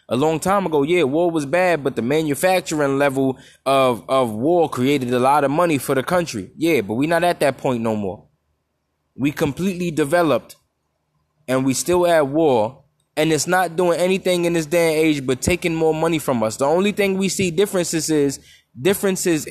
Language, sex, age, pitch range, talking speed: English, male, 20-39, 135-175 Hz, 195 wpm